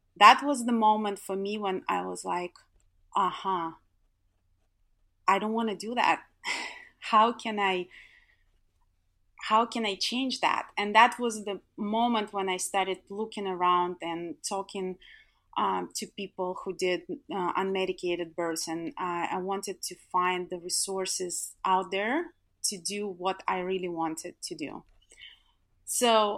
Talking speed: 150 wpm